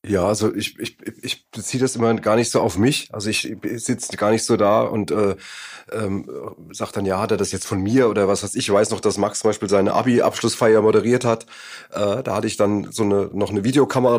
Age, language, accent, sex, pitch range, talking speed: 30-49, German, German, male, 110-125 Hz, 245 wpm